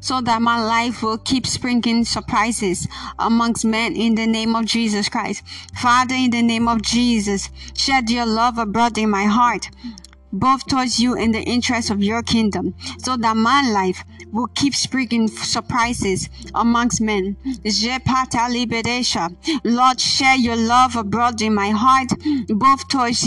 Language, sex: English, female